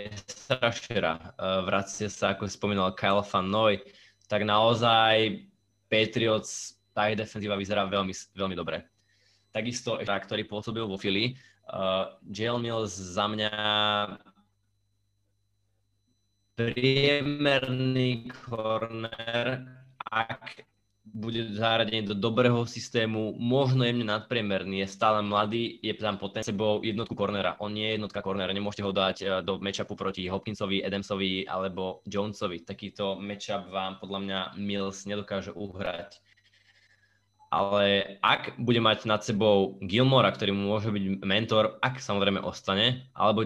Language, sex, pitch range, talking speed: Slovak, male, 100-110 Hz, 115 wpm